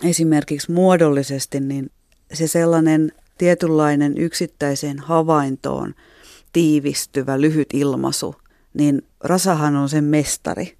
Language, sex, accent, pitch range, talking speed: Finnish, female, native, 140-160 Hz, 90 wpm